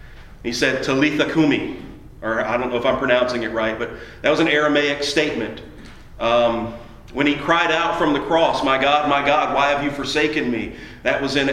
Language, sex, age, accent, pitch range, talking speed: English, male, 40-59, American, 130-150 Hz, 205 wpm